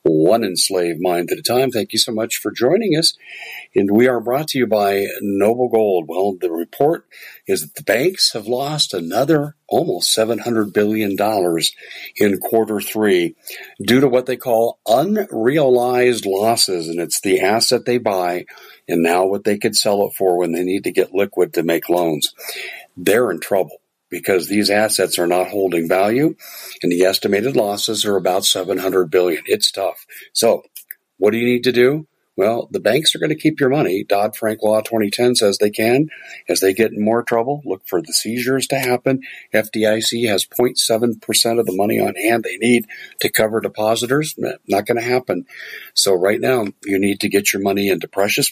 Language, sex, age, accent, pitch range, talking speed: English, male, 50-69, American, 100-125 Hz, 185 wpm